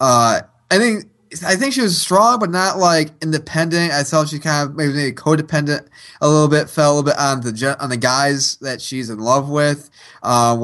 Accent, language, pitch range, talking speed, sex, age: American, English, 130-155 Hz, 215 wpm, male, 20-39